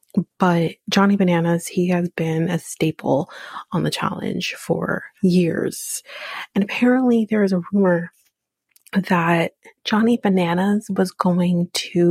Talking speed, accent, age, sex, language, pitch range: 125 wpm, American, 30-49, female, English, 170-200 Hz